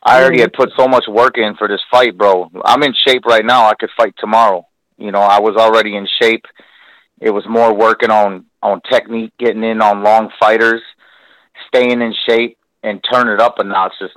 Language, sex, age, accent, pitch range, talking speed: English, male, 30-49, American, 105-125 Hz, 210 wpm